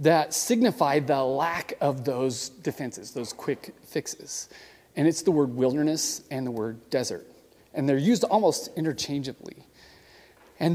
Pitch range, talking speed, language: 140-190 Hz, 140 wpm, English